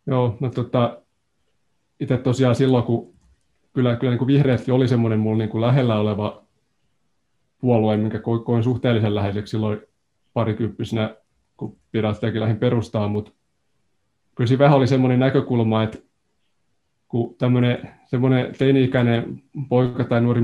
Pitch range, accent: 110-120 Hz, native